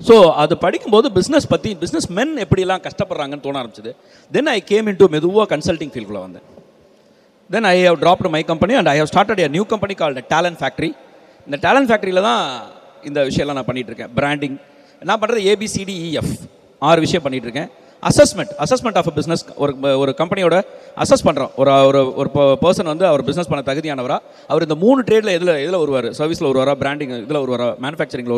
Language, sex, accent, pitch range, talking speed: Tamil, male, native, 140-200 Hz, 165 wpm